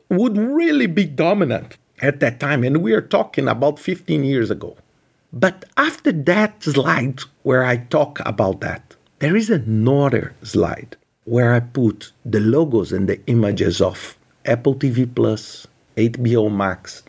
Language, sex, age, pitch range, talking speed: English, male, 50-69, 120-200 Hz, 150 wpm